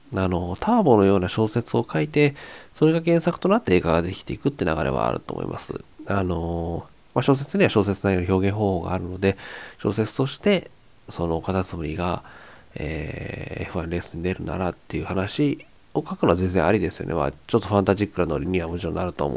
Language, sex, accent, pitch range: Japanese, male, native, 90-125 Hz